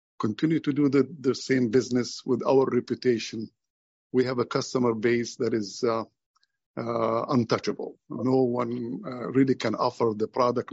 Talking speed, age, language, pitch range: 155 wpm, 50-69, English, 115-130 Hz